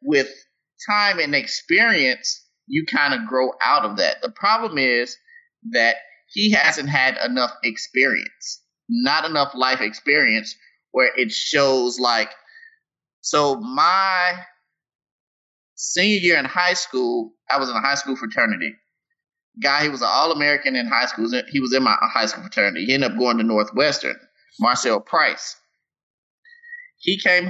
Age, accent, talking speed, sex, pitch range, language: 30-49, American, 145 wpm, male, 125-205 Hz, English